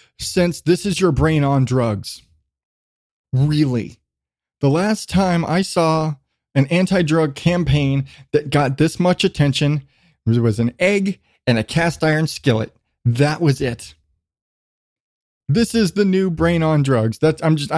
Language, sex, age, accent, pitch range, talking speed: English, male, 20-39, American, 135-190 Hz, 145 wpm